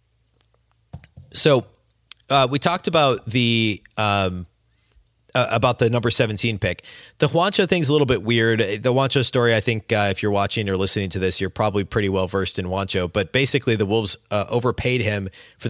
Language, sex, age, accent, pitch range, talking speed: English, male, 30-49, American, 100-125 Hz, 180 wpm